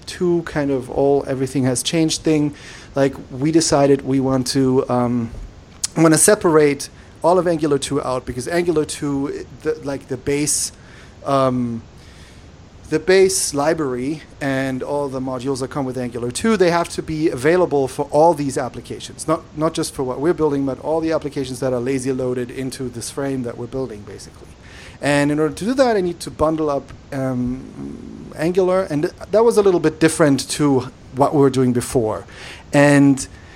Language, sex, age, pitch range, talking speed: English, male, 30-49, 130-165 Hz, 180 wpm